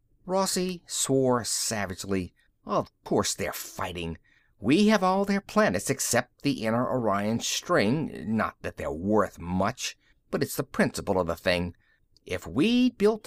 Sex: male